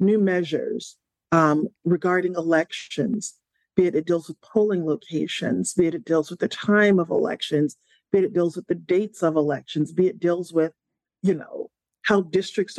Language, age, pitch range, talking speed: English, 40-59, 165-205 Hz, 180 wpm